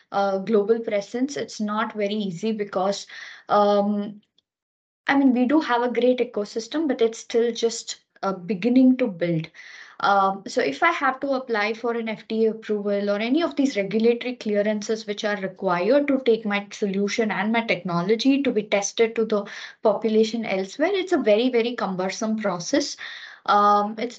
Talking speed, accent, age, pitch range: 165 wpm, Indian, 20-39, 205-250 Hz